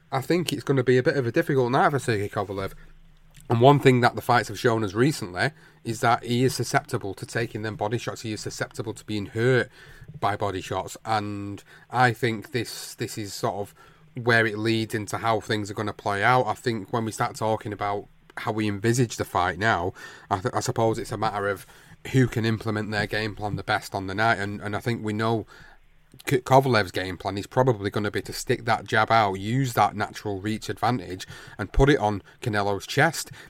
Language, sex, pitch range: English, male, 105-135 Hz